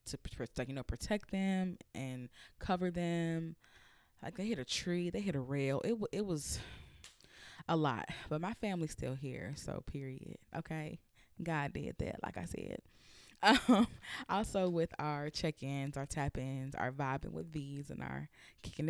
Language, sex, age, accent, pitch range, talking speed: English, female, 20-39, American, 135-170 Hz, 160 wpm